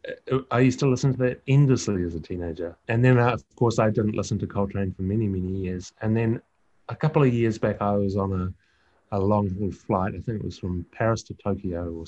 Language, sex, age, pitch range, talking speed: English, male, 30-49, 90-115 Hz, 230 wpm